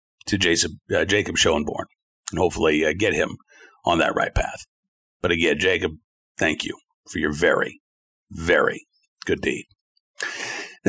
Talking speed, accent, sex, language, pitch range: 140 wpm, American, male, English, 130-170 Hz